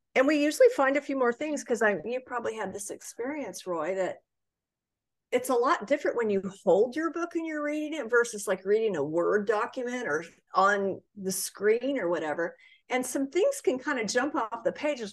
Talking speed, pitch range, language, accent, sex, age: 205 wpm, 185-250 Hz, English, American, female, 50-69